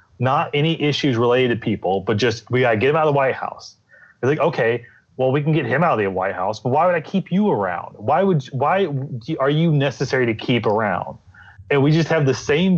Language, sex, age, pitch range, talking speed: English, male, 30-49, 115-150 Hz, 245 wpm